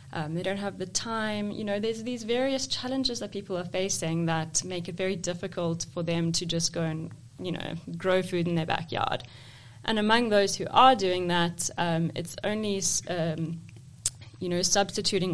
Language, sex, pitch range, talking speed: English, female, 165-195 Hz, 190 wpm